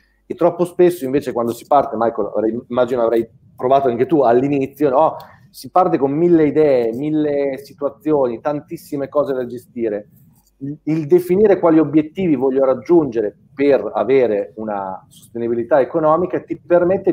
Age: 30-49